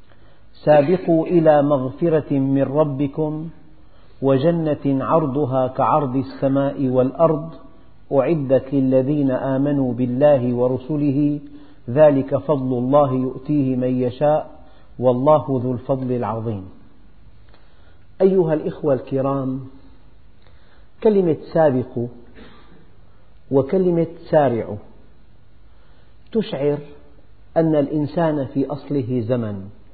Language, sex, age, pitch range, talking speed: Arabic, male, 50-69, 125-155 Hz, 75 wpm